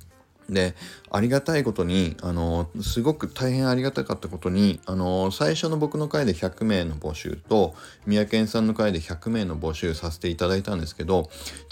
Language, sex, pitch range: Japanese, male, 90-110 Hz